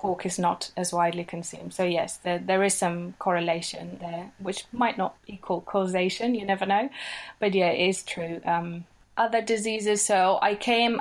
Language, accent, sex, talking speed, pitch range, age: English, British, female, 180 wpm, 190-220 Hz, 20-39